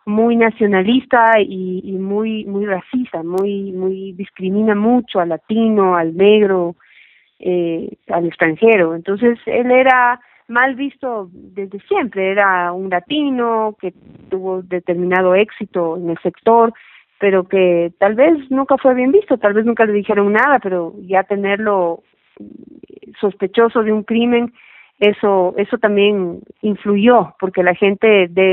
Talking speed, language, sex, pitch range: 135 wpm, Spanish, female, 185-230 Hz